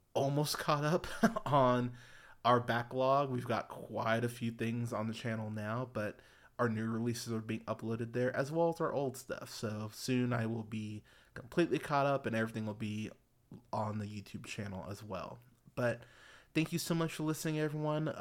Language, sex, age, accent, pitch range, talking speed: English, male, 20-39, American, 110-130 Hz, 185 wpm